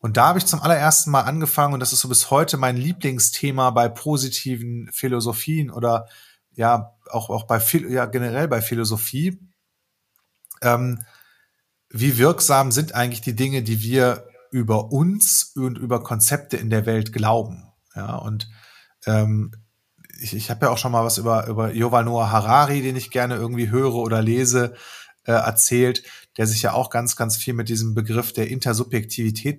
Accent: German